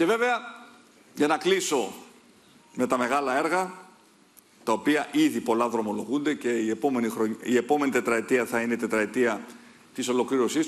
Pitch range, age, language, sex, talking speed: 110-150 Hz, 40-59, Greek, male, 150 wpm